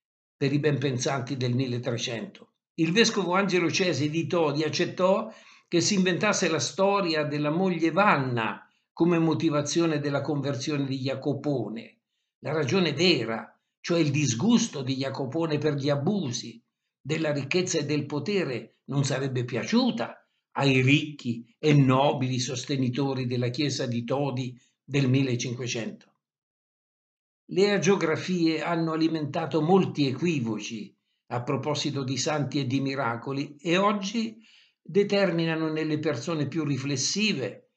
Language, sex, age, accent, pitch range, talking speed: Italian, male, 60-79, native, 135-170 Hz, 120 wpm